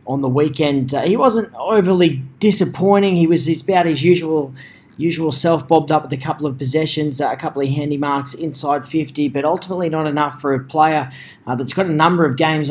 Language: English